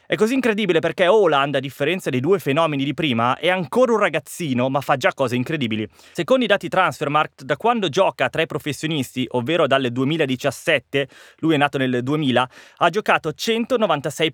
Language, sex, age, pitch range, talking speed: Italian, male, 20-39, 130-185 Hz, 175 wpm